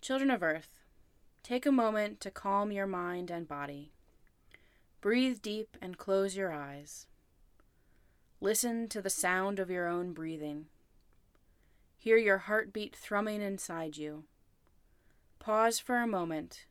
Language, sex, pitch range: English, female, 150-210 Hz